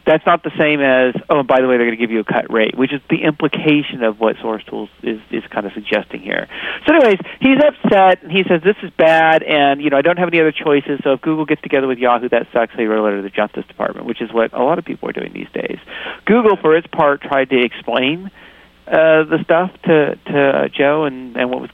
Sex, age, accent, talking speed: male, 40-59, American, 265 wpm